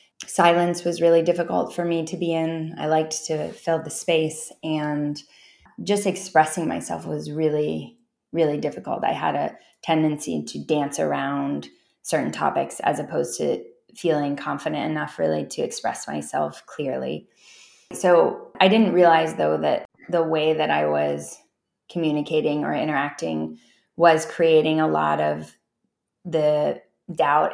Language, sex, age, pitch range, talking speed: English, female, 20-39, 145-170 Hz, 140 wpm